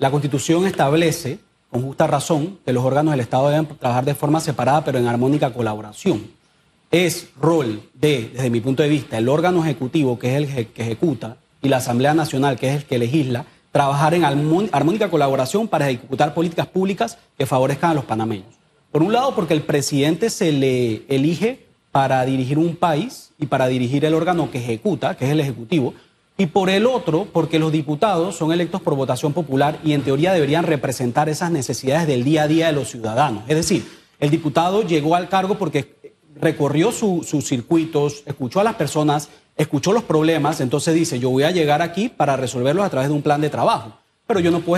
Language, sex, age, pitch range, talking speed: Spanish, male, 30-49, 130-165 Hz, 195 wpm